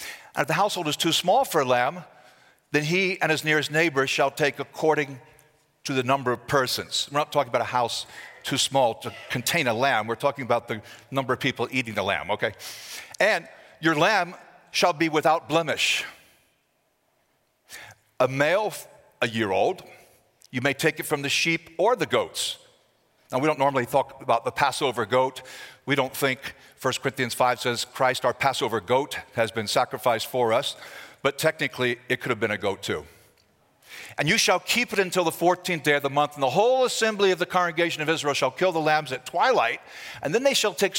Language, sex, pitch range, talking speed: English, male, 130-175 Hz, 200 wpm